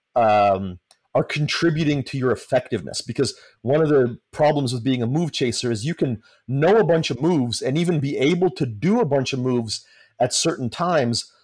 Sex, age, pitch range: male, 40-59, 120-155 Hz